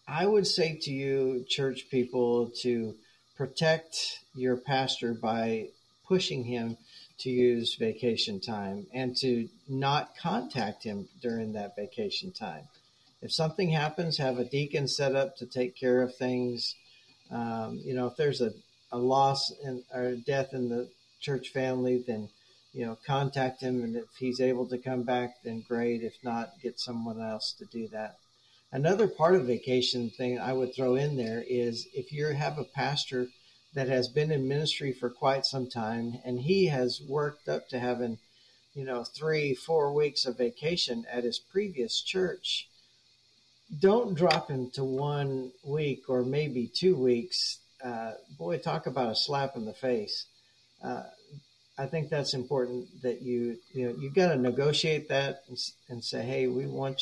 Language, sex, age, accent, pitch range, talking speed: English, male, 50-69, American, 120-140 Hz, 165 wpm